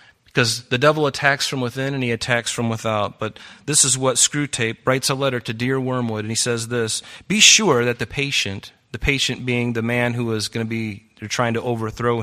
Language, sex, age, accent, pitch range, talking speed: English, male, 30-49, American, 115-145 Hz, 220 wpm